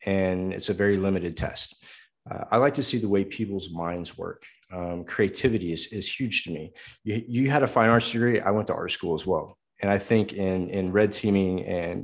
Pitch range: 90-110 Hz